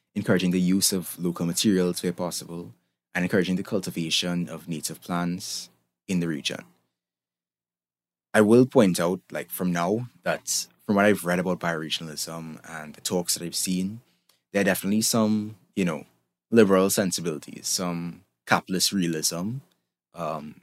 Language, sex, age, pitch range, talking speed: English, male, 20-39, 75-95 Hz, 145 wpm